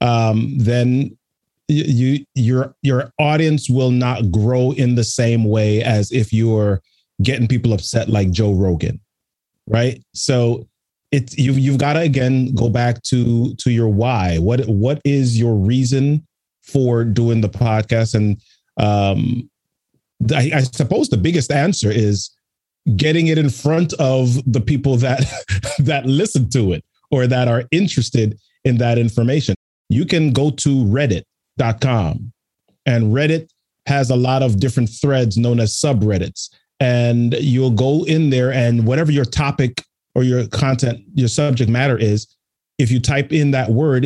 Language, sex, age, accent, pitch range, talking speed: English, male, 30-49, American, 115-135 Hz, 155 wpm